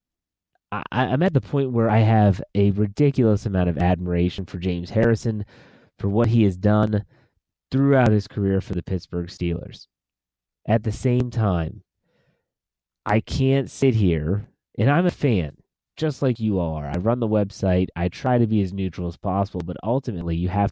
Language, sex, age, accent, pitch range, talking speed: English, male, 30-49, American, 90-120 Hz, 170 wpm